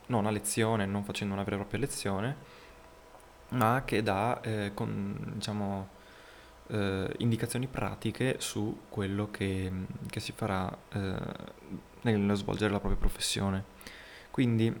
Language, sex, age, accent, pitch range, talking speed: Italian, male, 20-39, native, 100-120 Hz, 130 wpm